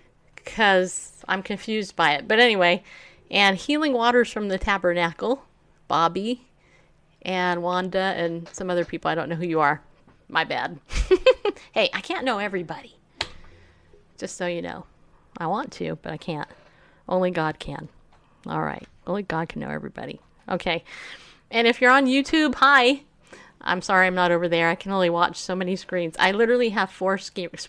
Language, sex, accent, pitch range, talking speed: English, female, American, 175-235 Hz, 170 wpm